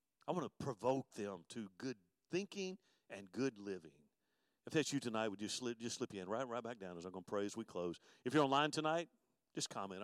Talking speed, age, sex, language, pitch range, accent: 225 wpm, 50-69, male, English, 110-135 Hz, American